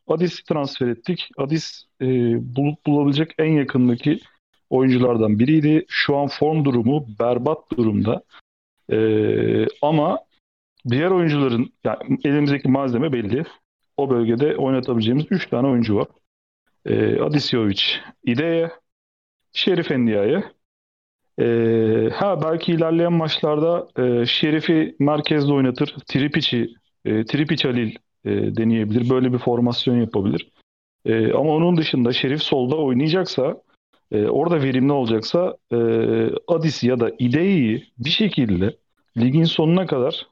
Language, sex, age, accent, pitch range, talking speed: Turkish, male, 40-59, native, 115-155 Hz, 110 wpm